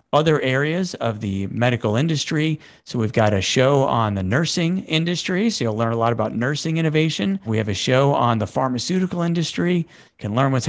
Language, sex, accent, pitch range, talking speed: English, male, American, 115-155 Hz, 195 wpm